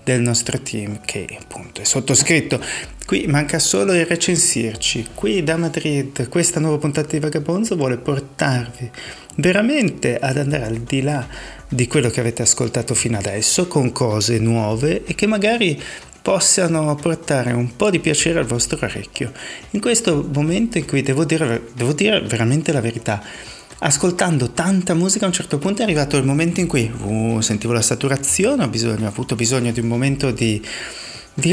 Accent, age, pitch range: native, 30-49, 115-160 Hz